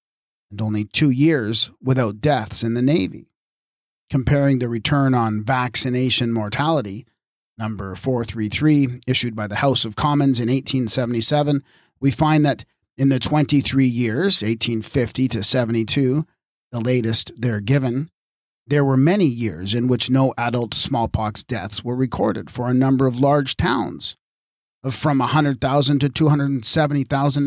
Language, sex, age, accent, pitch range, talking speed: English, male, 40-59, American, 115-140 Hz, 135 wpm